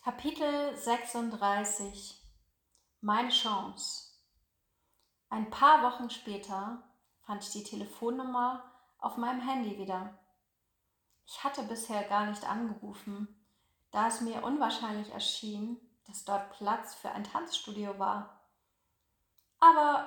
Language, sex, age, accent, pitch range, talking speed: German, female, 30-49, German, 200-245 Hz, 105 wpm